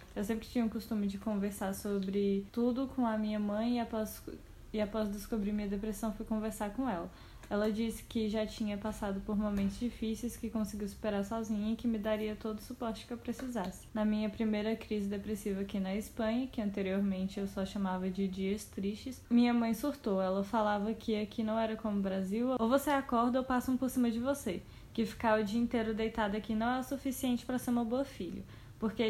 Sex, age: female, 10-29